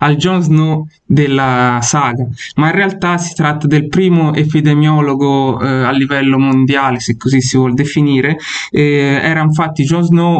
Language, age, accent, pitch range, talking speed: Italian, 20-39, native, 135-165 Hz, 155 wpm